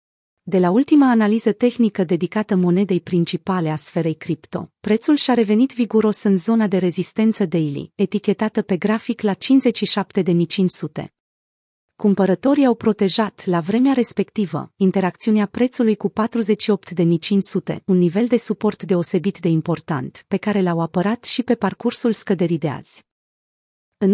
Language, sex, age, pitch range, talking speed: Romanian, female, 30-49, 180-225 Hz, 130 wpm